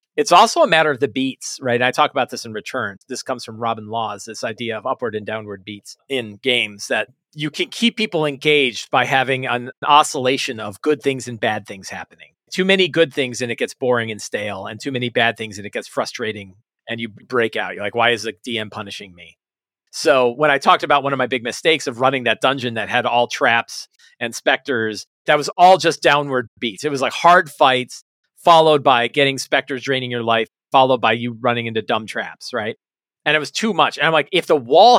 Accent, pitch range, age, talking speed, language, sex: American, 120-150 Hz, 40-59, 230 wpm, English, male